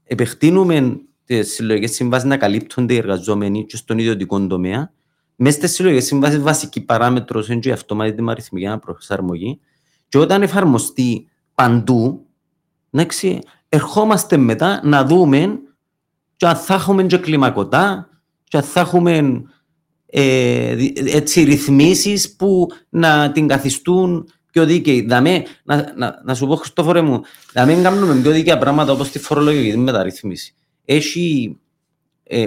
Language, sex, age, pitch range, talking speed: English, male, 40-59, 125-165 Hz, 125 wpm